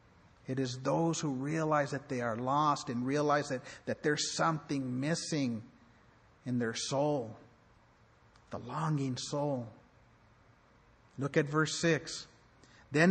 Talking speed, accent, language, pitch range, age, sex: 125 wpm, American, English, 120-160 Hz, 50-69, male